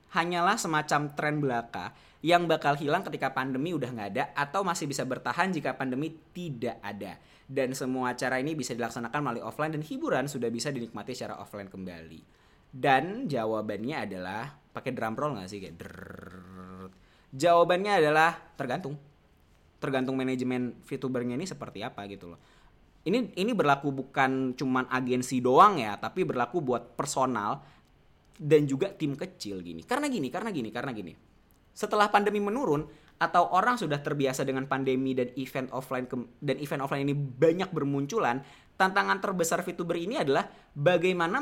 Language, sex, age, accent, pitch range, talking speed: Indonesian, male, 20-39, native, 125-160 Hz, 150 wpm